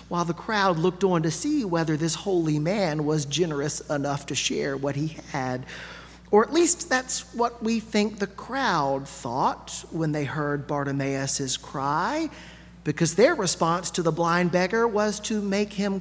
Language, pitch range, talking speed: English, 165-210 Hz, 170 wpm